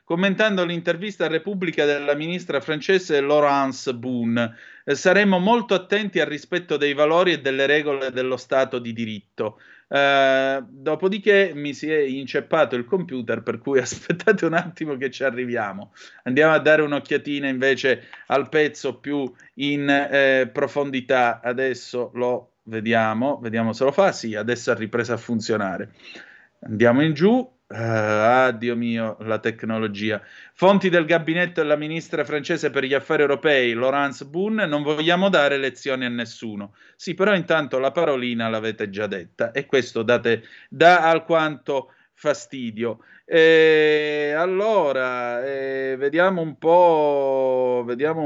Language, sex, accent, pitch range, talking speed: Italian, male, native, 125-165 Hz, 140 wpm